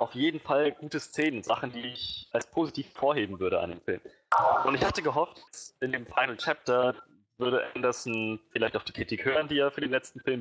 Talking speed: 210 wpm